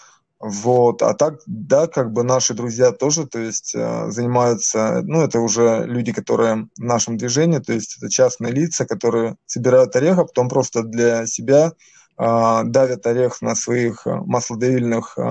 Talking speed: 150 wpm